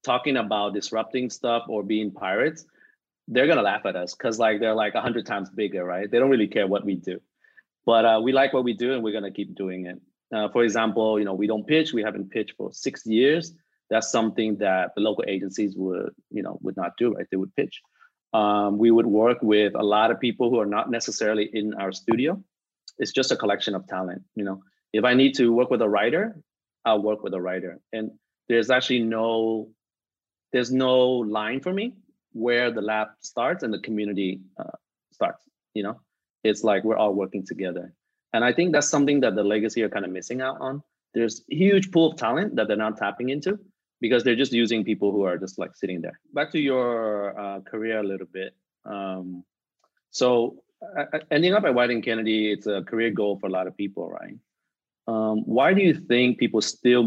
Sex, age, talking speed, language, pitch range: male, 30-49, 215 wpm, Vietnamese, 100-125 Hz